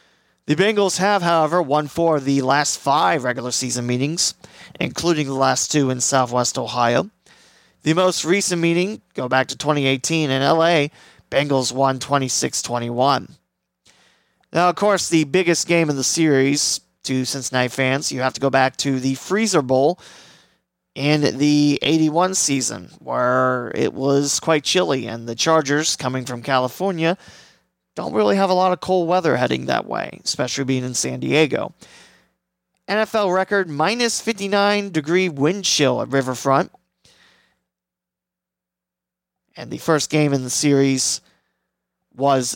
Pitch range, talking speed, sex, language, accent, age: 130-170 Hz, 145 wpm, male, English, American, 30-49